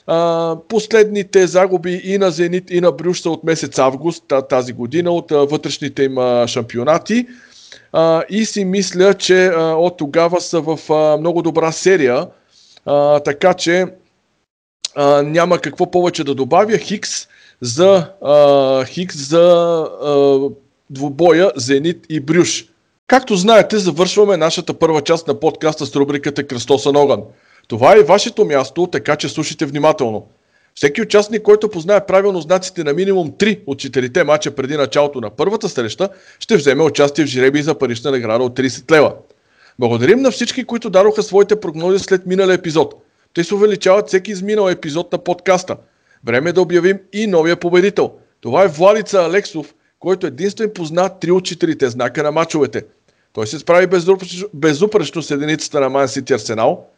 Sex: male